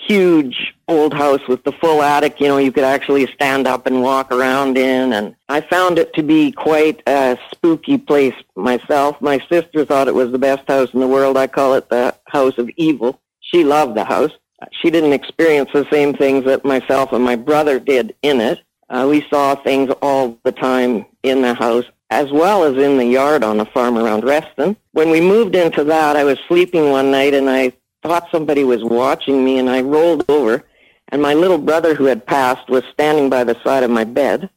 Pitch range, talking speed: 130-165 Hz, 210 wpm